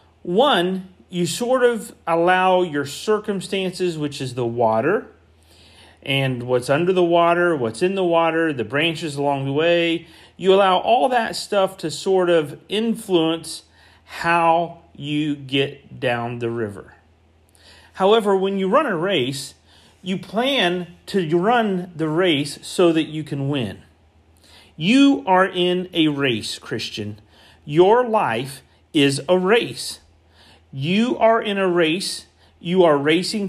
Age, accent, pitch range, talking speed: 40-59, American, 130-185 Hz, 135 wpm